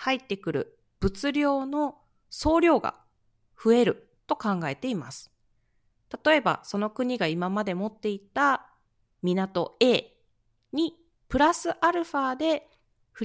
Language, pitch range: Japanese, 180-260 Hz